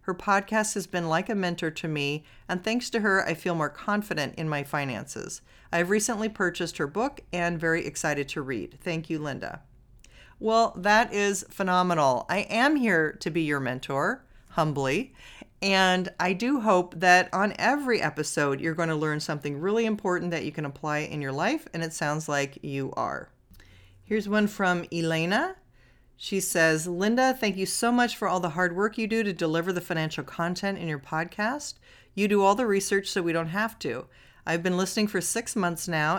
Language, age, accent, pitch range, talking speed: English, 40-59, American, 160-205 Hz, 190 wpm